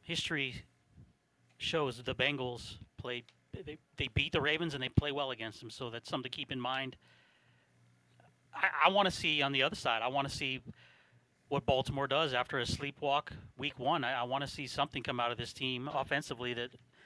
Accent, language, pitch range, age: American, English, 120-140 Hz, 30-49